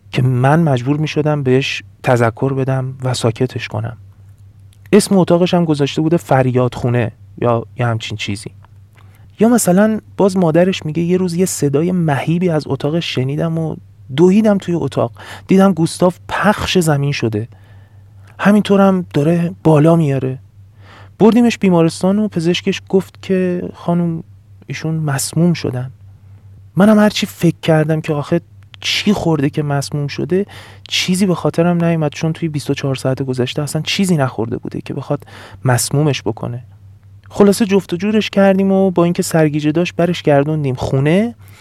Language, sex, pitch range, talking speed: Persian, male, 110-170 Hz, 145 wpm